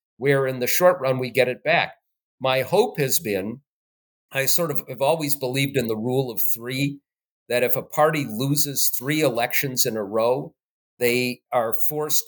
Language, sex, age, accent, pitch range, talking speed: English, male, 50-69, American, 125-150 Hz, 180 wpm